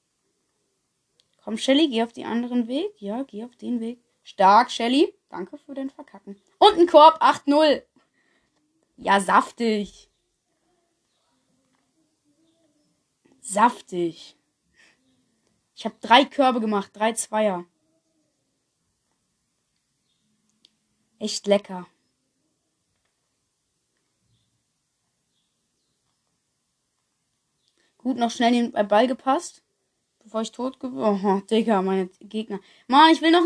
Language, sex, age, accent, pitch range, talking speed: German, female, 20-39, German, 210-275 Hz, 90 wpm